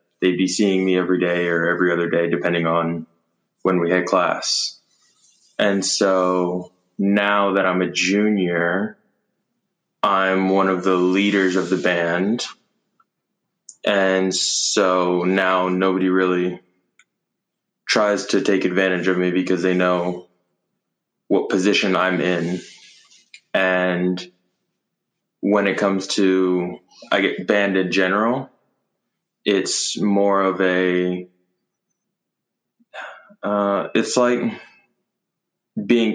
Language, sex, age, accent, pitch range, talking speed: English, male, 20-39, American, 90-95 Hz, 110 wpm